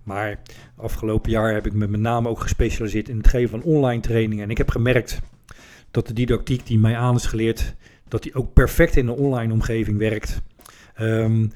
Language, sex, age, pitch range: Dutch, male, 40-59, 110-130 Hz